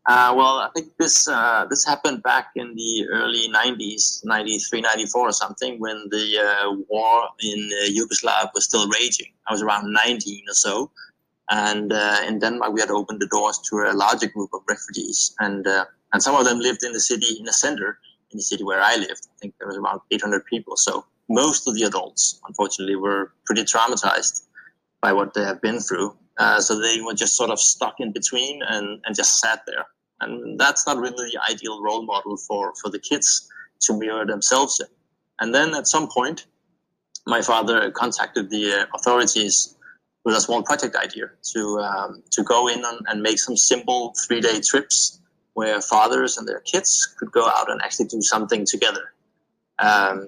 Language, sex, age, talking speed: English, male, 20-39, 190 wpm